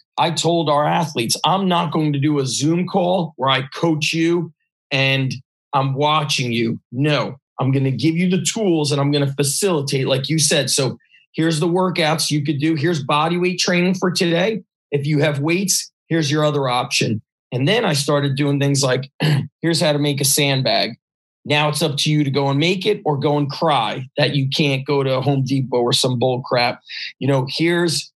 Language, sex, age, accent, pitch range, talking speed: English, male, 40-59, American, 135-160 Hz, 205 wpm